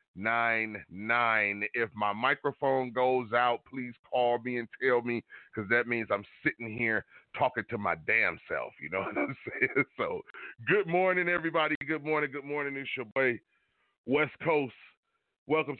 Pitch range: 105-140 Hz